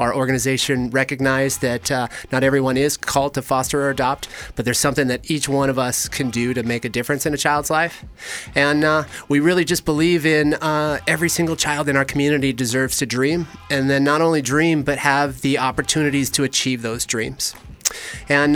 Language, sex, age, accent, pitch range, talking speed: English, male, 30-49, American, 125-145 Hz, 200 wpm